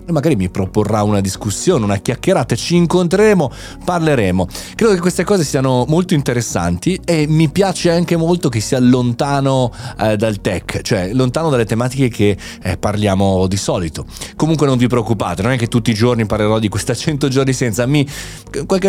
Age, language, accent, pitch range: 30-49, Italian, native, 110-170 Hz